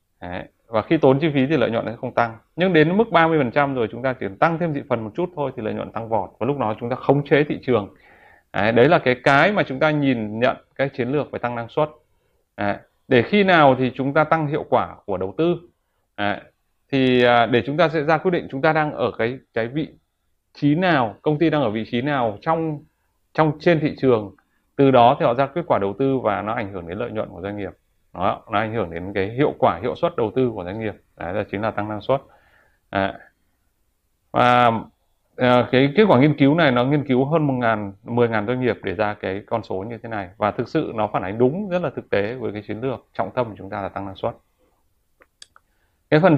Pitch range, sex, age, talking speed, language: 110-150 Hz, male, 20-39, 235 wpm, Vietnamese